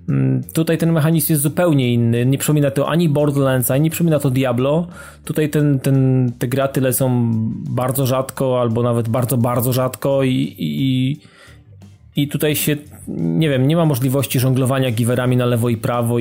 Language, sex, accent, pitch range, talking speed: Polish, male, native, 120-145 Hz, 165 wpm